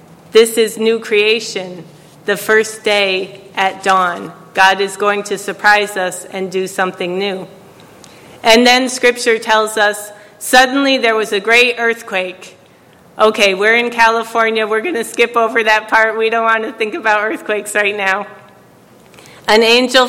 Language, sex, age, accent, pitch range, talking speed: English, female, 30-49, American, 200-230 Hz, 155 wpm